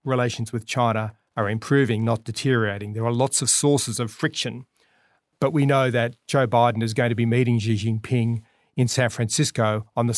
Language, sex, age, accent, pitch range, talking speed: English, male, 40-59, Australian, 115-130 Hz, 190 wpm